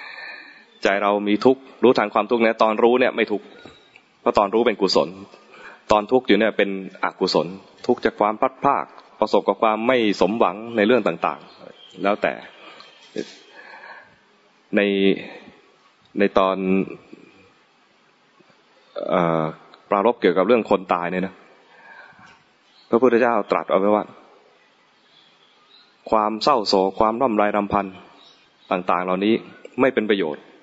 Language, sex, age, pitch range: English, male, 20-39, 95-115 Hz